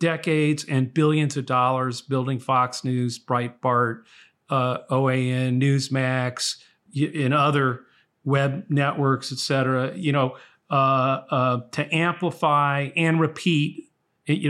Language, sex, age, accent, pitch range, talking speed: English, male, 40-59, American, 125-155 Hz, 115 wpm